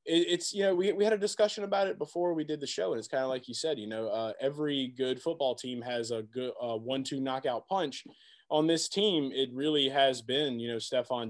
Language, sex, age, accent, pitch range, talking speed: English, male, 20-39, American, 115-150 Hz, 245 wpm